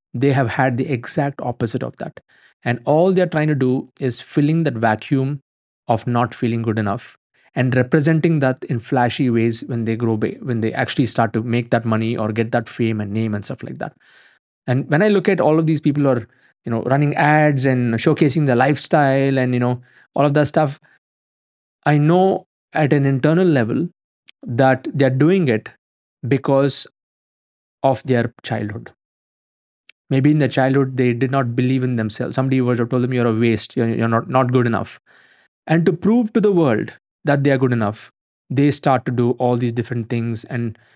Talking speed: 195 wpm